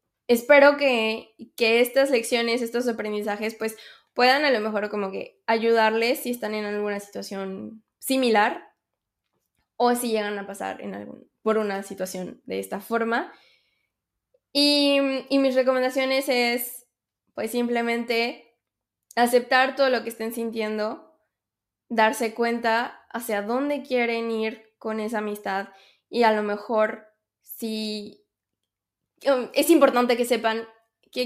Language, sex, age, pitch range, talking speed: Spanish, female, 10-29, 210-250 Hz, 125 wpm